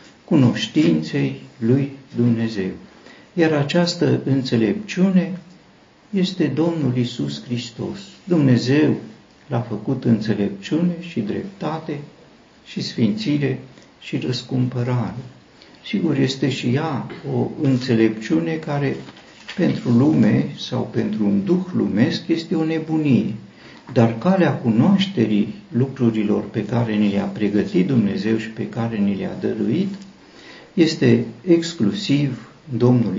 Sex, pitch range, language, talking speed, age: male, 115-165 Hz, Romanian, 100 wpm, 50-69